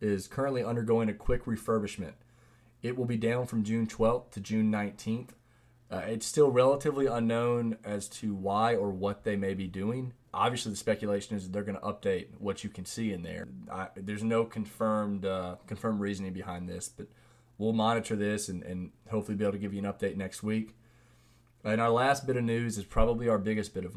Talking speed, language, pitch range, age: 205 wpm, English, 100-115 Hz, 20-39